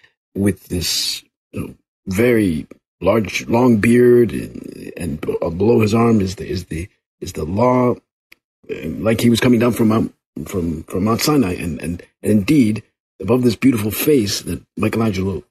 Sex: male